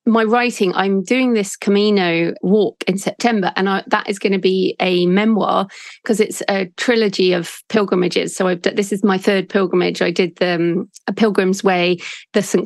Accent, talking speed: British, 195 wpm